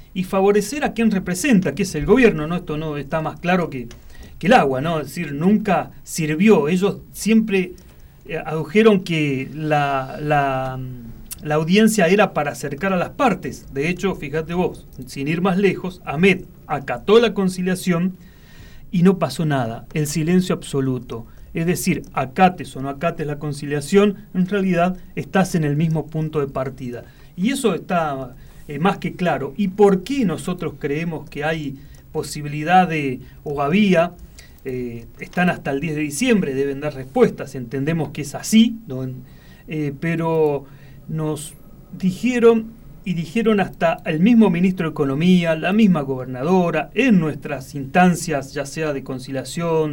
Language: Spanish